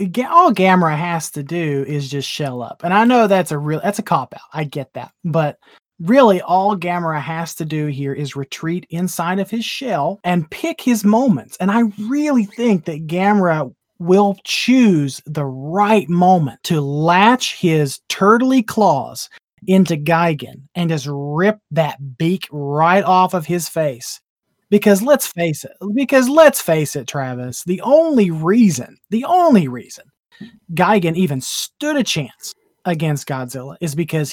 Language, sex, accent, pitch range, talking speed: English, male, American, 150-205 Hz, 160 wpm